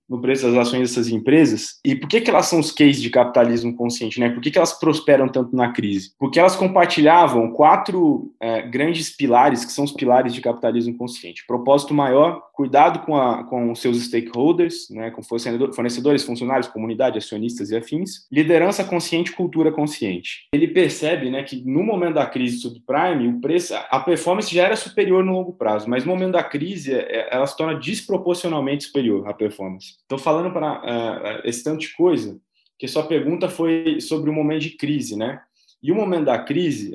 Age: 20-39